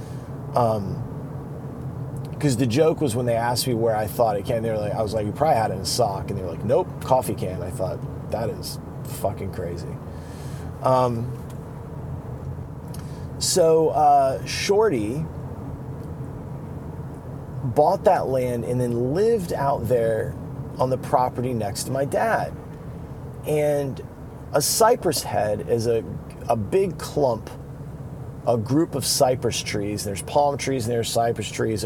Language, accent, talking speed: English, American, 150 wpm